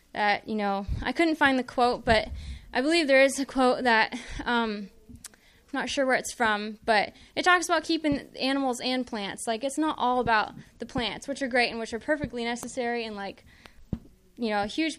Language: English